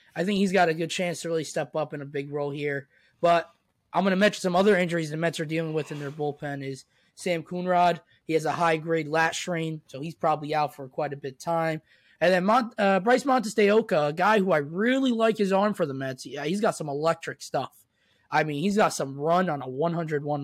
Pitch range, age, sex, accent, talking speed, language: 145-180 Hz, 20-39, male, American, 245 wpm, English